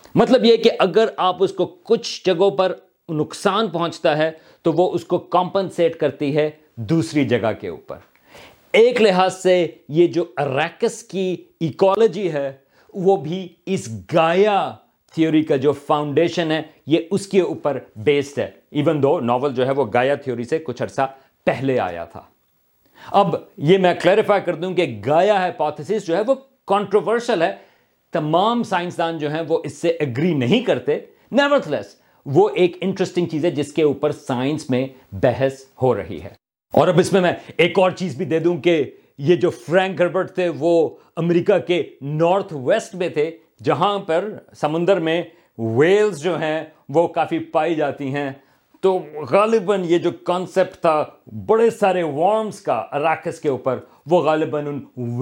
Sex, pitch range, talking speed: male, 145-185 Hz, 160 wpm